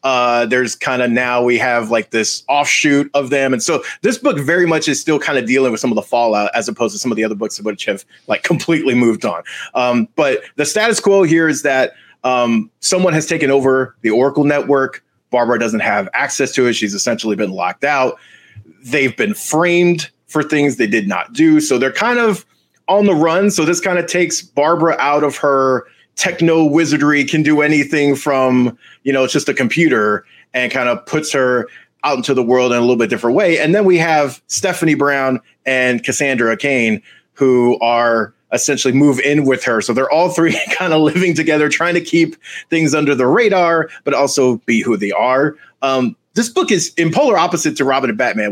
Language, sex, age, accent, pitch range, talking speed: English, male, 30-49, American, 125-160 Hz, 210 wpm